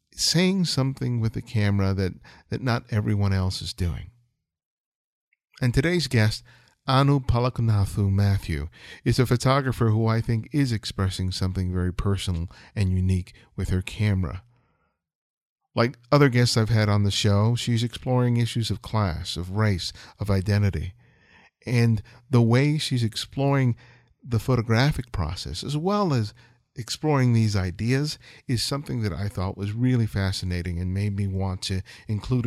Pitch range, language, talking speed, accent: 100-125 Hz, English, 145 wpm, American